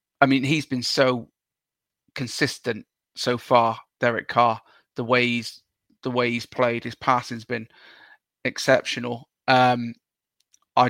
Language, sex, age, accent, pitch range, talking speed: English, male, 20-39, British, 125-135 Hz, 125 wpm